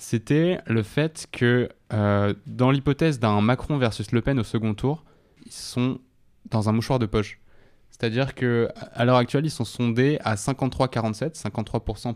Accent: French